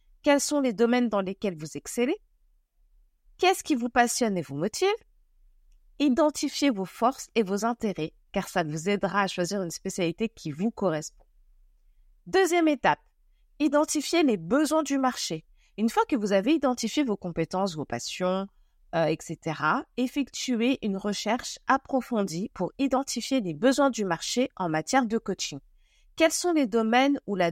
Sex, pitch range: female, 190-275 Hz